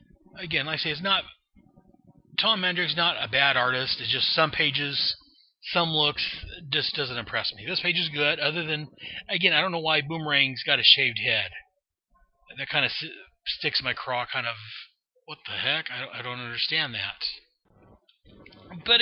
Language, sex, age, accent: English, male, 30-49, American